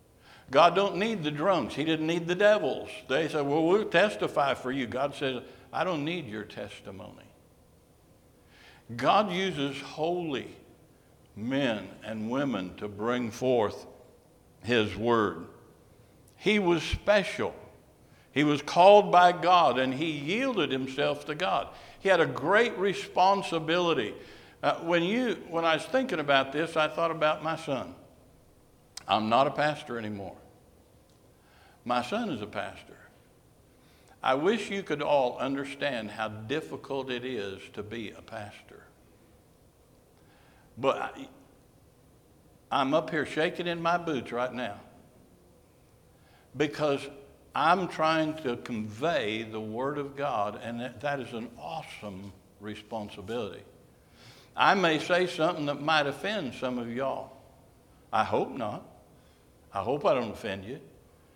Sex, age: male, 60-79